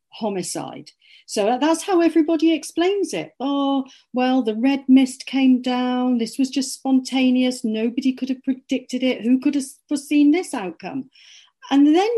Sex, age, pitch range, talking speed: female, 40-59, 215-295 Hz, 155 wpm